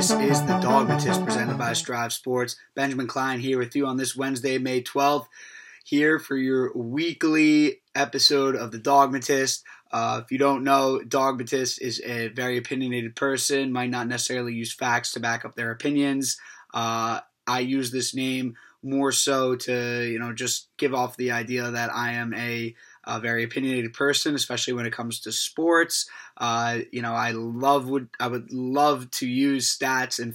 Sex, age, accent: male, 20-39, American